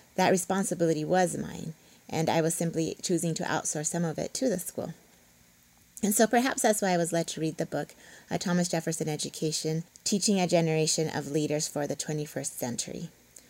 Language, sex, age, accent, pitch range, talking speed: English, female, 20-39, American, 155-185 Hz, 185 wpm